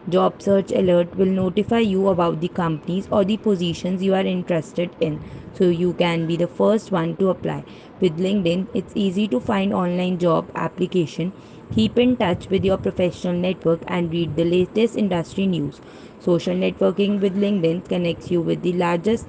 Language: English